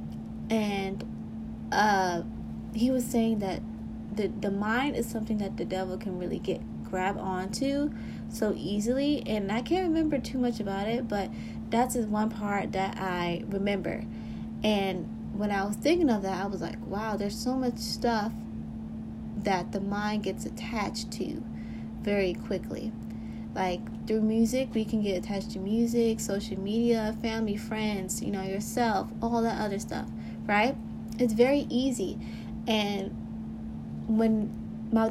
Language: English